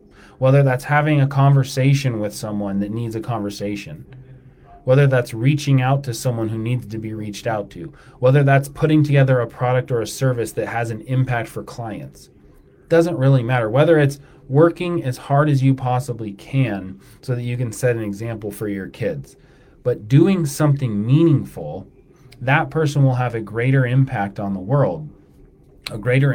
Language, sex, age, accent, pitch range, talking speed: English, male, 30-49, American, 105-135 Hz, 175 wpm